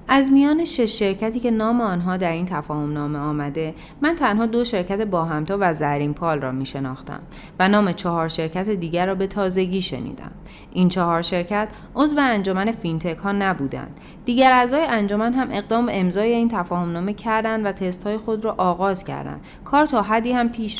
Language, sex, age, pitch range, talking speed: Persian, female, 30-49, 165-220 Hz, 180 wpm